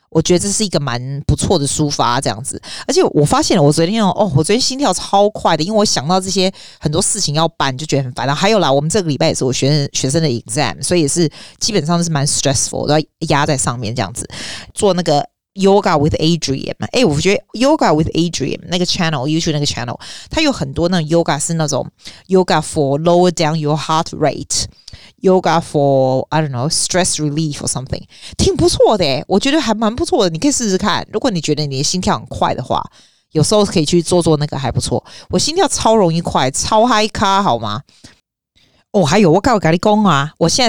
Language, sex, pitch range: Chinese, female, 145-190 Hz